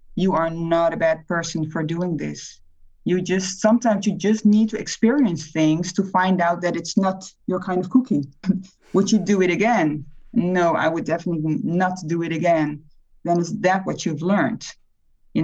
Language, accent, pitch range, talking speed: English, Dutch, 170-215 Hz, 185 wpm